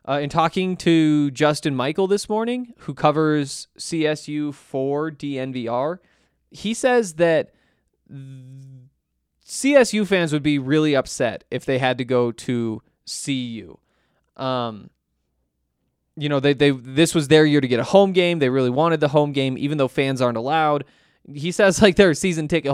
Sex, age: male, 20-39